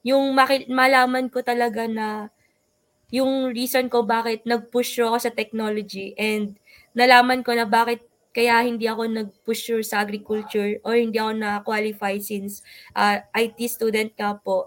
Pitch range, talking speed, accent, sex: 215-245 Hz, 145 wpm, Filipino, female